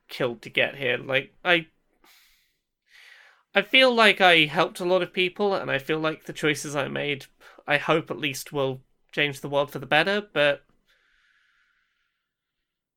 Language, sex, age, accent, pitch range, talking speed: English, male, 20-39, British, 135-185 Hz, 160 wpm